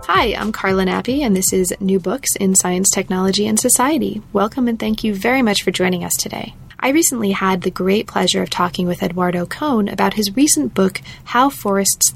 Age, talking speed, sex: 30-49, 200 wpm, female